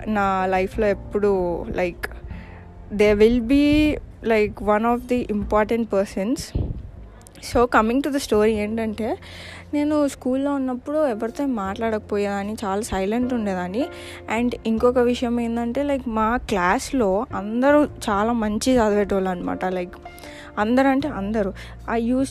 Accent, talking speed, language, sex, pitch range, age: native, 120 wpm, Telugu, female, 200-245 Hz, 20-39